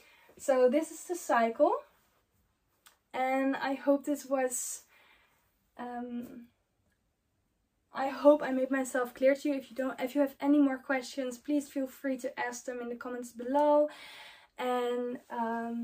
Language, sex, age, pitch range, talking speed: English, female, 10-29, 230-275 Hz, 150 wpm